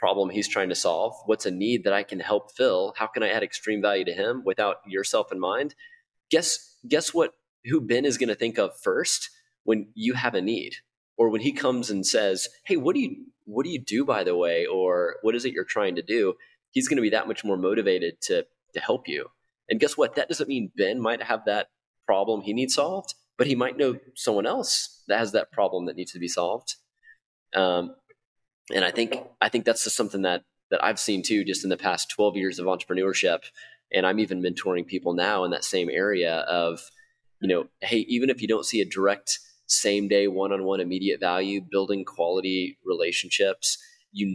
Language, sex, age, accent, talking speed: English, male, 30-49, American, 220 wpm